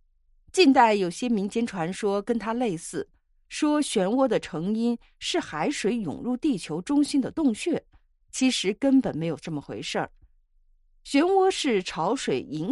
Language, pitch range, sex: Chinese, 165-275 Hz, female